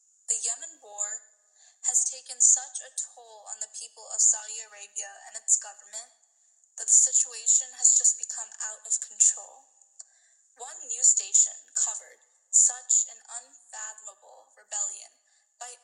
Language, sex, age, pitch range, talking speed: English, female, 10-29, 215-250 Hz, 135 wpm